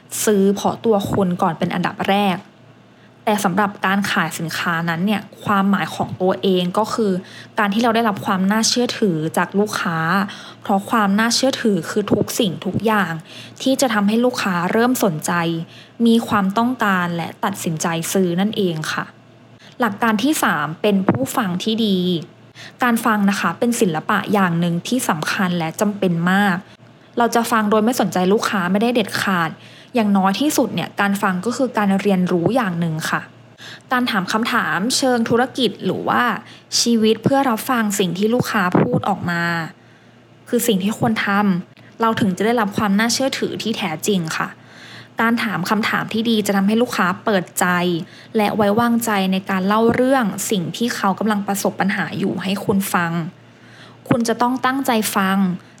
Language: English